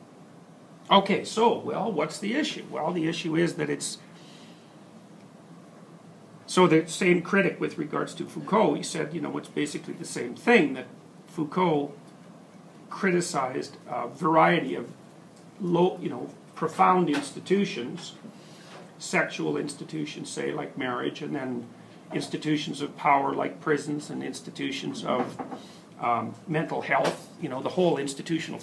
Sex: male